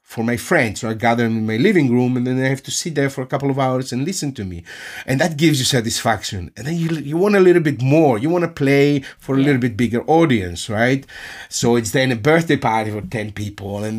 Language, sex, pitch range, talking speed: German, male, 115-140 Hz, 260 wpm